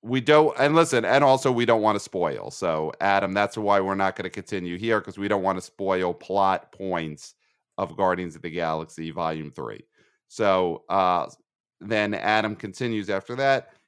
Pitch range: 95-115 Hz